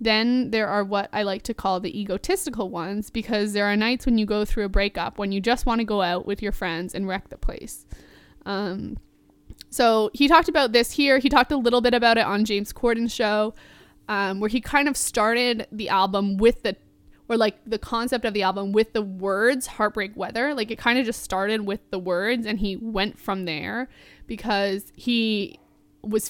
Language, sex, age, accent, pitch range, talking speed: English, female, 20-39, American, 195-235 Hz, 210 wpm